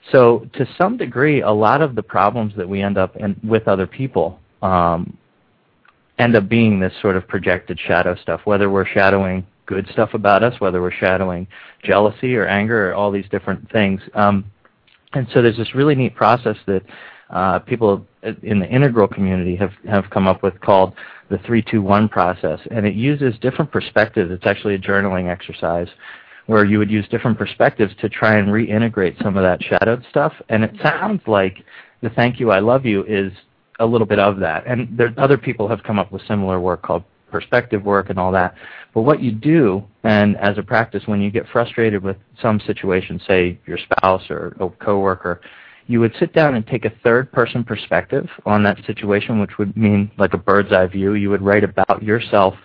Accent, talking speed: American, 195 wpm